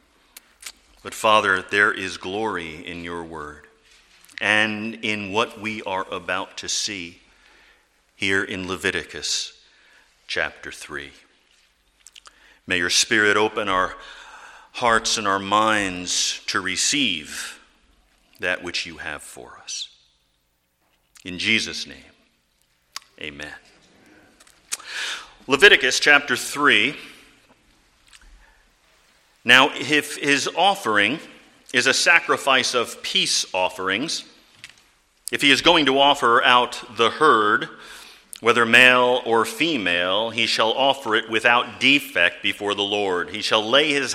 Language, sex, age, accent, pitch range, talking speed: English, male, 50-69, American, 90-120 Hz, 110 wpm